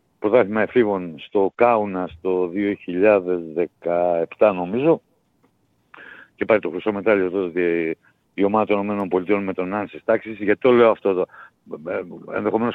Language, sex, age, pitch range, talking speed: Greek, male, 60-79, 105-135 Hz, 130 wpm